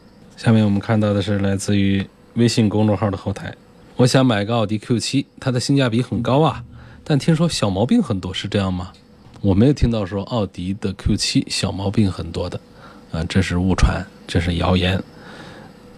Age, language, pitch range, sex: 20-39, Chinese, 100-125 Hz, male